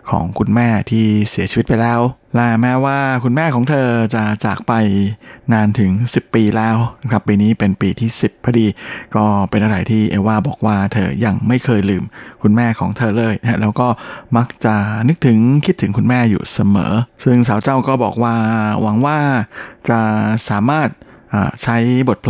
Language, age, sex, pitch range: Thai, 20-39, male, 105-125 Hz